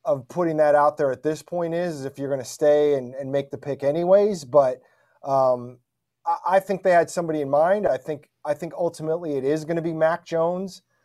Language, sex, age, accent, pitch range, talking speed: English, male, 30-49, American, 140-170 Hz, 235 wpm